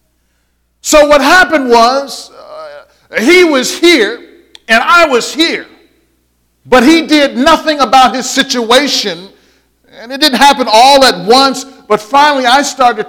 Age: 50-69